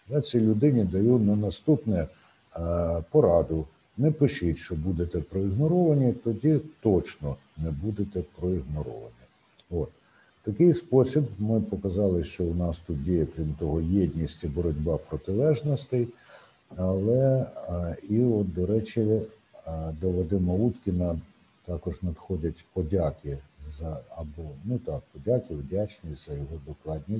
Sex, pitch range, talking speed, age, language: male, 85-115 Hz, 115 wpm, 60-79, Ukrainian